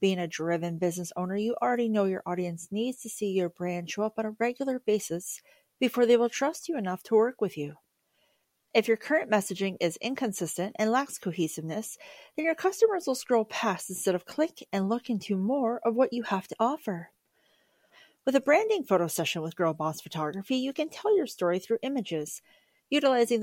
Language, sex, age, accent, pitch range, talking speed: English, female, 40-59, American, 180-255 Hz, 195 wpm